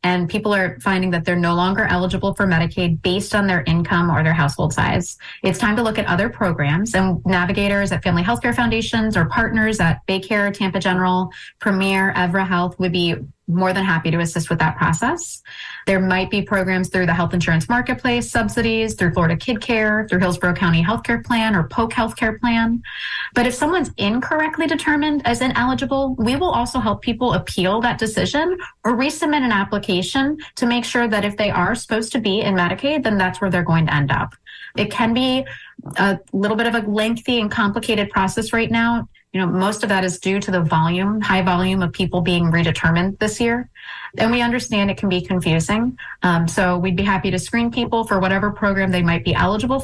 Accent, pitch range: American, 180-230 Hz